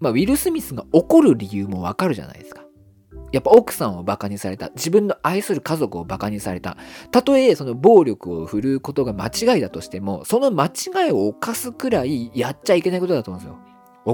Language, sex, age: Japanese, male, 40-59